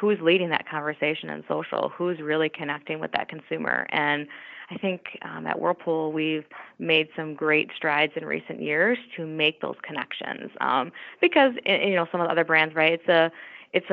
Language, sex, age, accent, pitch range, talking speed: English, female, 20-39, American, 145-165 Hz, 185 wpm